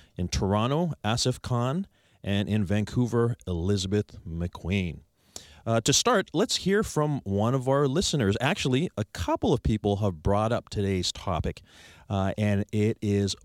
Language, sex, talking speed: English, male, 145 wpm